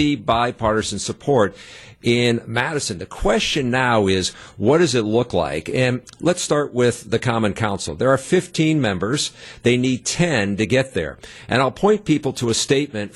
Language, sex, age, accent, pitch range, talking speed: English, male, 50-69, American, 105-140 Hz, 170 wpm